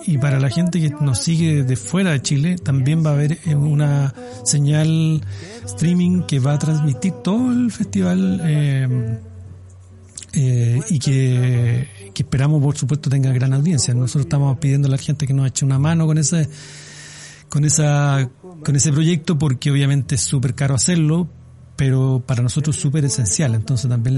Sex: male